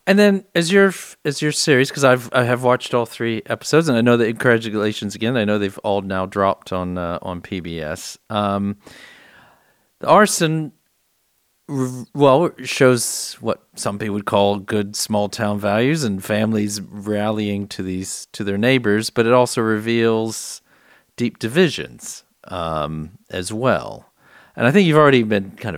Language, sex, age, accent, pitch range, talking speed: English, male, 40-59, American, 100-125 Hz, 160 wpm